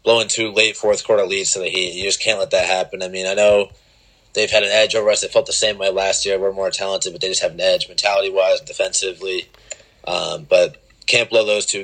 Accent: American